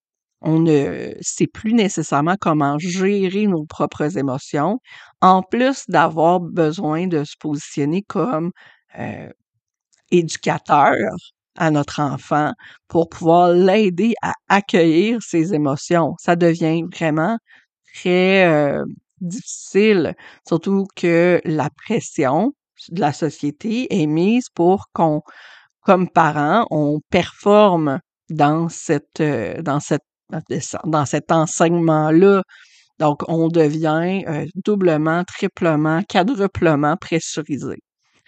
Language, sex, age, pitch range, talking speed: French, female, 50-69, 155-195 Hz, 100 wpm